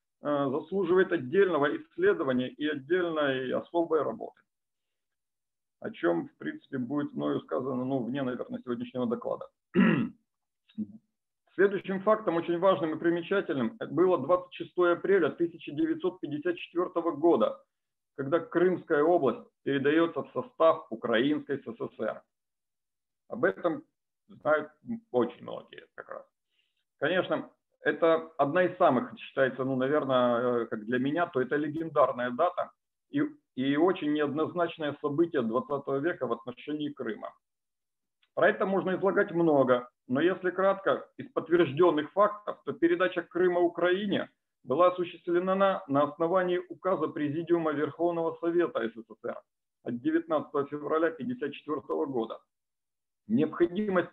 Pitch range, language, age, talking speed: 145-190 Hz, Russian, 50-69, 110 wpm